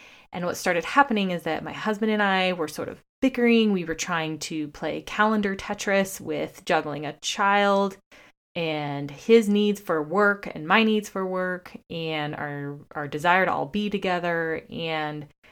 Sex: female